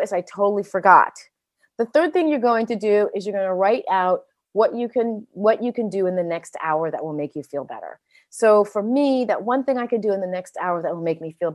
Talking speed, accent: 270 wpm, American